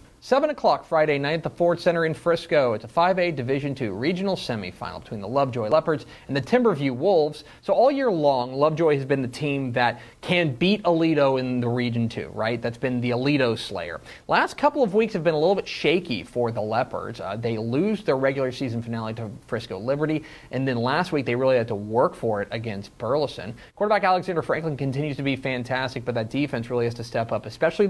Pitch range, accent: 115-155 Hz, American